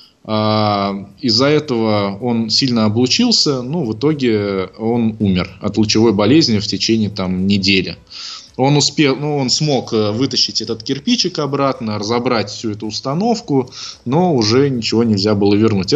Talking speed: 145 wpm